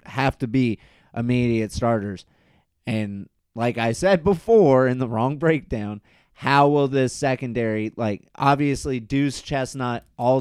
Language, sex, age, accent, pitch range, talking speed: English, male, 30-49, American, 100-125 Hz, 135 wpm